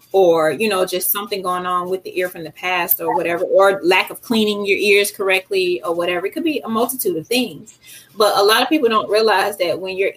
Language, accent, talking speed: English, American, 240 wpm